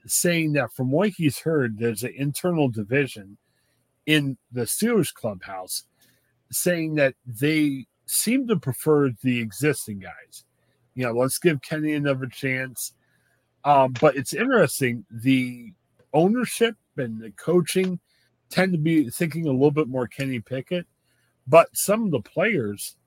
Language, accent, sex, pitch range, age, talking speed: English, American, male, 120-155 Hz, 40-59, 140 wpm